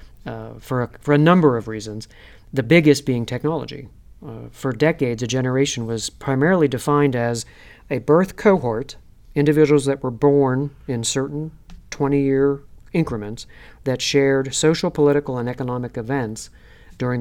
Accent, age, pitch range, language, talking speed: American, 40-59, 115-145 Hz, English, 135 wpm